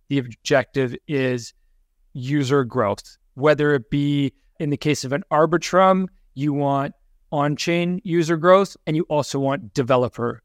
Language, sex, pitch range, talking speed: English, male, 130-155 Hz, 140 wpm